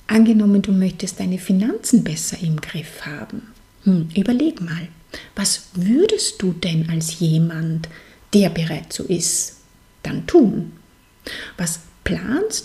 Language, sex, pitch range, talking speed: German, female, 165-210 Hz, 125 wpm